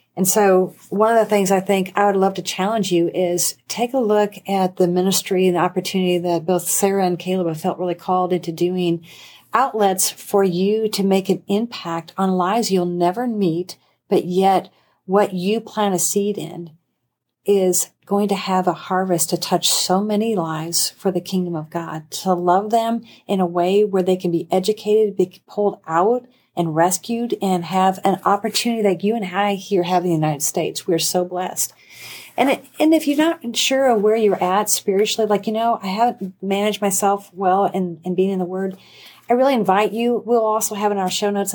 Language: English